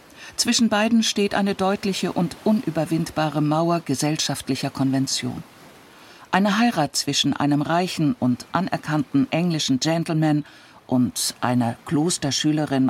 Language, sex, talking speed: German, female, 100 wpm